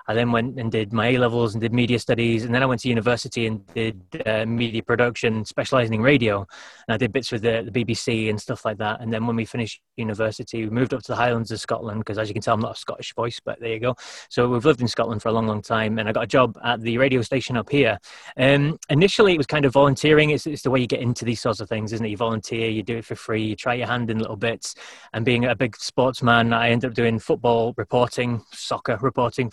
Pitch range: 115-125 Hz